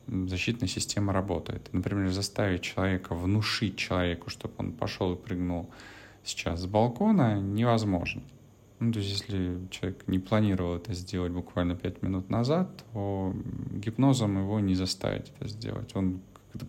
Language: Russian